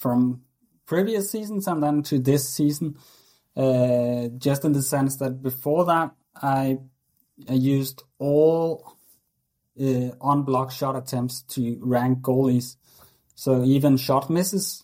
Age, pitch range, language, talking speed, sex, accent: 30-49, 125-145 Hz, English, 125 wpm, male, Norwegian